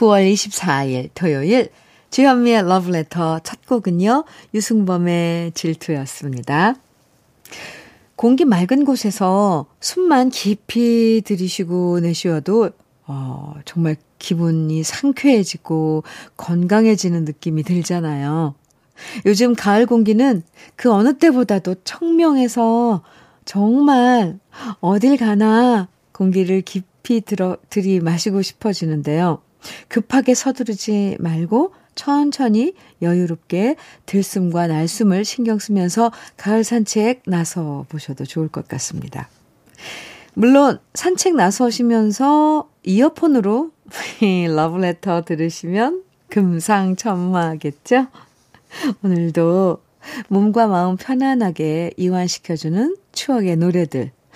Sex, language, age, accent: female, Korean, 50-69, native